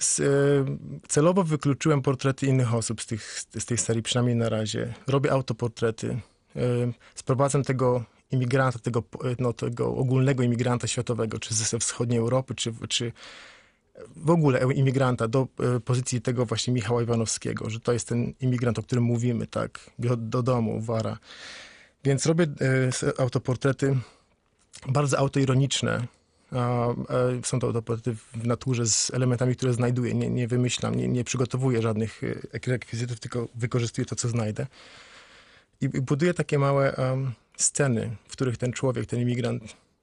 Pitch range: 115-130 Hz